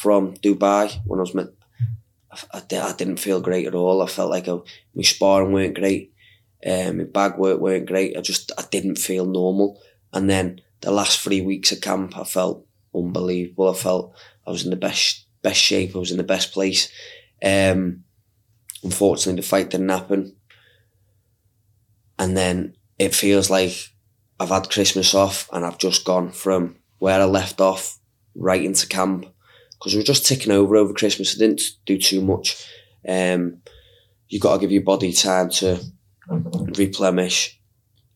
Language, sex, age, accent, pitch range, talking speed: English, male, 20-39, British, 90-100 Hz, 170 wpm